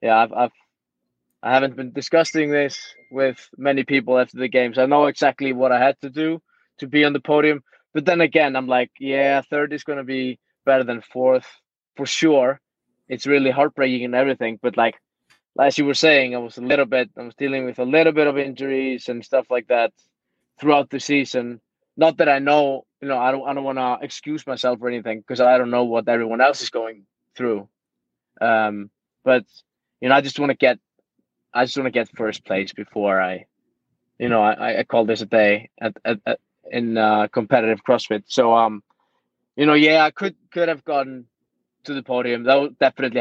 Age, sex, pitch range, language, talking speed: 20-39, male, 120-140 Hz, English, 205 wpm